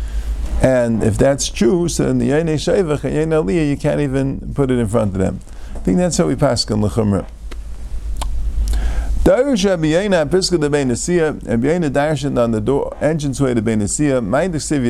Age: 50-69